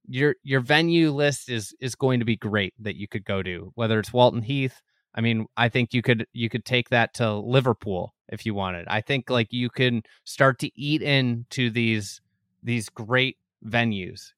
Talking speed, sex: 195 wpm, male